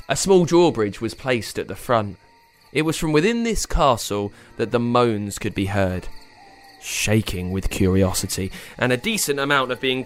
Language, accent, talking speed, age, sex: English, British, 175 wpm, 20-39, male